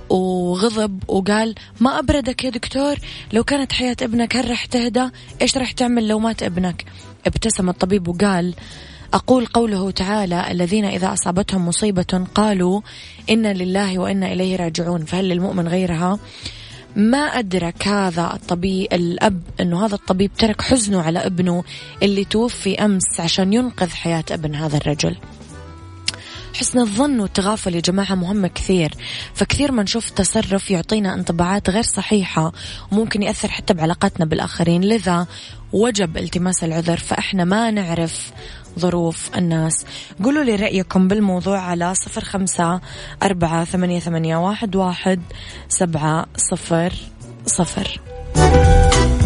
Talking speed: 115 wpm